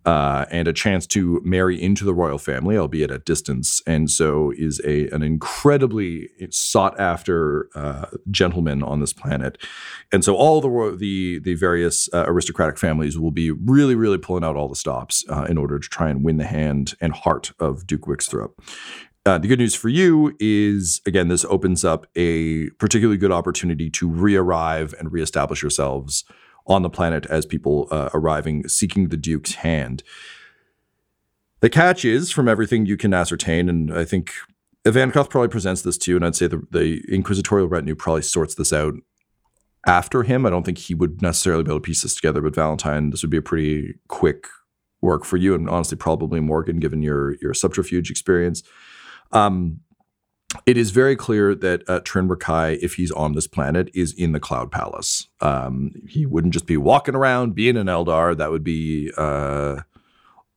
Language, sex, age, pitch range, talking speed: English, male, 40-59, 75-95 Hz, 180 wpm